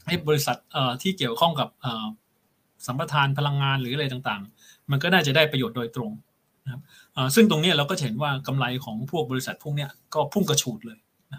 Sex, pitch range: male, 130-165 Hz